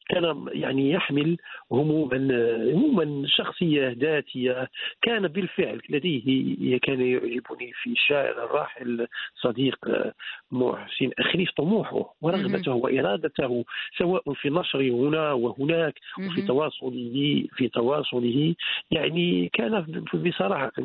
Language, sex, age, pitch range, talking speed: Arabic, male, 50-69, 125-155 Hz, 95 wpm